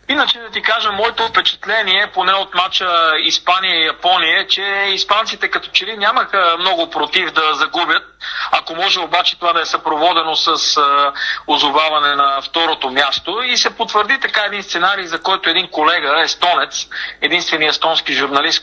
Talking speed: 150 wpm